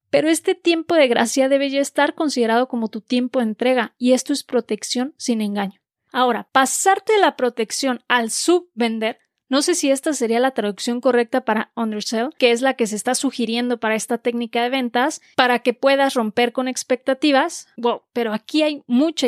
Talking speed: 185 wpm